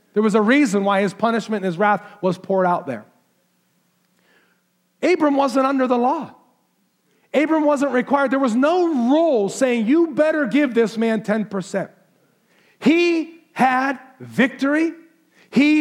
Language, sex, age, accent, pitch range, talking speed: English, male, 40-59, American, 170-235 Hz, 140 wpm